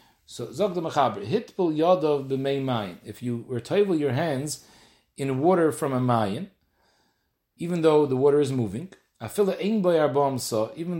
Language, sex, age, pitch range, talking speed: English, male, 40-59, 130-170 Hz, 125 wpm